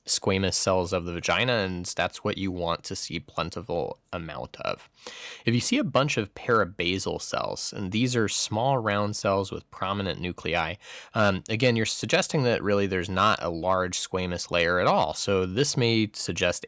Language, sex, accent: English, male, American